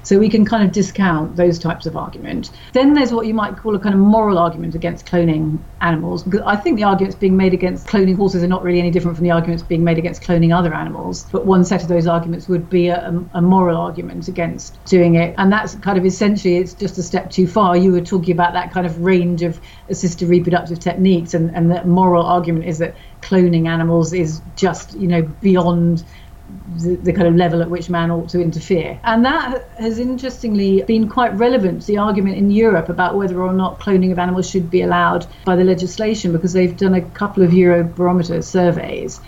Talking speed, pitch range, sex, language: 220 wpm, 170-195 Hz, female, English